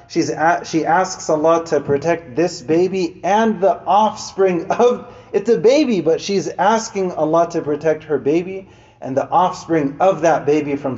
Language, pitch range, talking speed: English, 125-160 Hz, 165 wpm